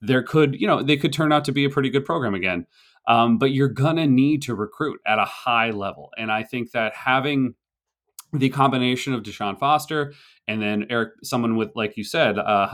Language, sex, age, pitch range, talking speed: English, male, 30-49, 100-135 Hz, 210 wpm